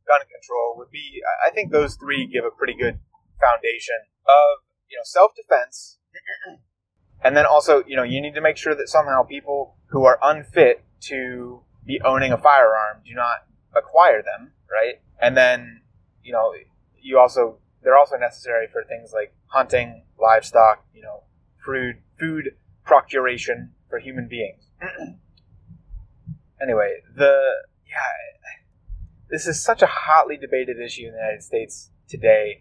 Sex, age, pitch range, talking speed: male, 20-39, 115-175 Hz, 145 wpm